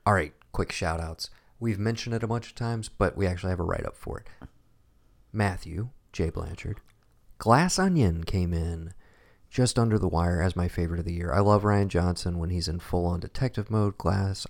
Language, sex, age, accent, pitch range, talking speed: English, male, 30-49, American, 85-110 Hz, 190 wpm